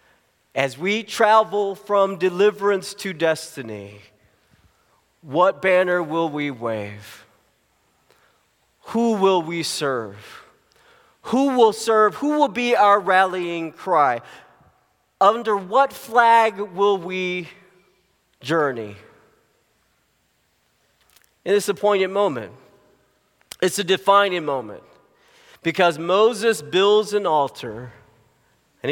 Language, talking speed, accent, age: English, 95 wpm, American, 40-59